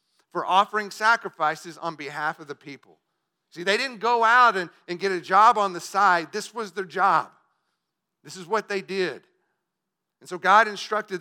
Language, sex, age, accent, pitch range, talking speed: English, male, 50-69, American, 145-190 Hz, 180 wpm